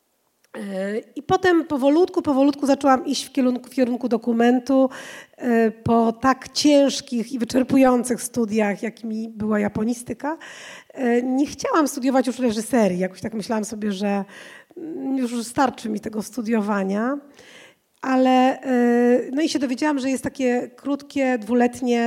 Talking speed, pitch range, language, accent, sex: 120 wpm, 220-270 Hz, Polish, native, female